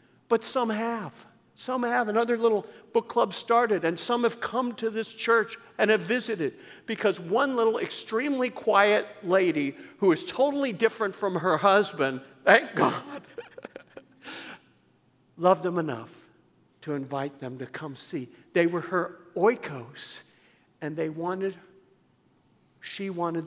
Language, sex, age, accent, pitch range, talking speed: English, male, 60-79, American, 150-215 Hz, 140 wpm